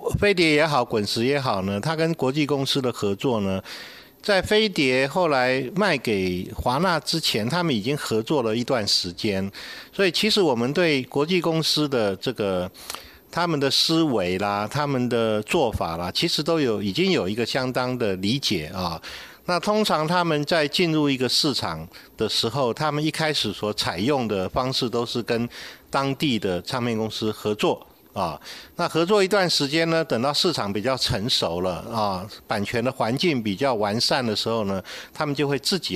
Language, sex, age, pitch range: Chinese, male, 50-69, 105-150 Hz